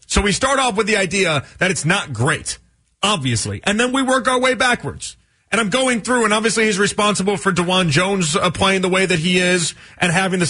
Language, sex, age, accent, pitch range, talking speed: English, male, 30-49, American, 160-205 Hz, 225 wpm